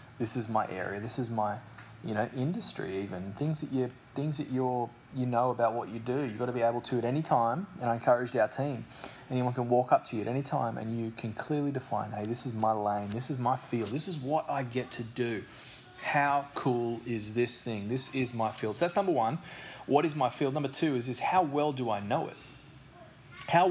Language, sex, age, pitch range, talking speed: English, male, 20-39, 115-135 Hz, 240 wpm